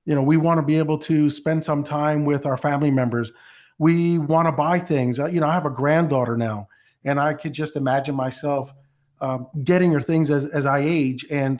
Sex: male